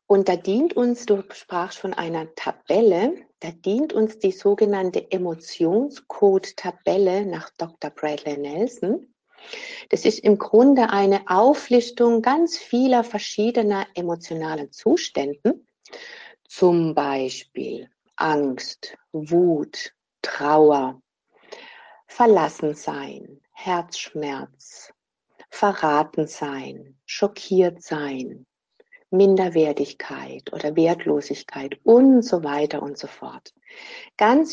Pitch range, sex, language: 165-250 Hz, female, German